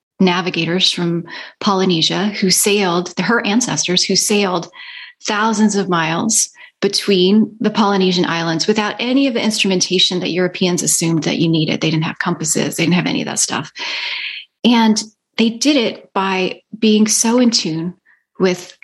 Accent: American